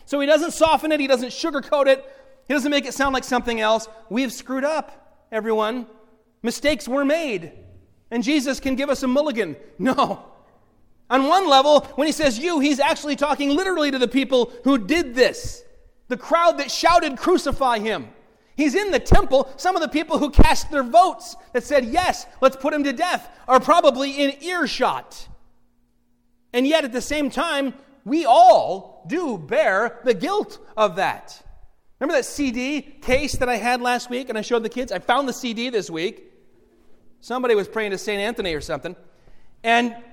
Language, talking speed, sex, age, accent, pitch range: English, 180 wpm, male, 30-49, American, 230-290 Hz